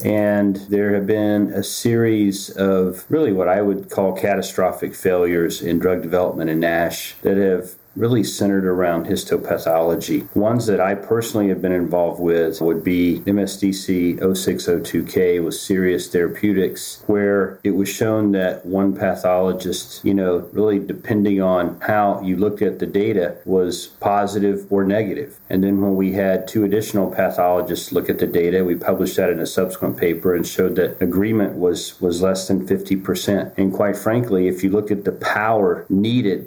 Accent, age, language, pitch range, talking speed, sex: American, 40-59, English, 90-100 Hz, 165 wpm, male